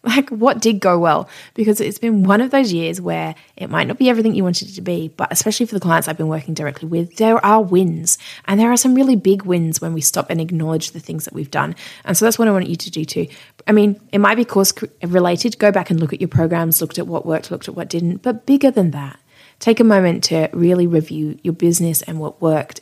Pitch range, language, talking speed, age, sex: 165-220 Hz, English, 265 wpm, 20-39, female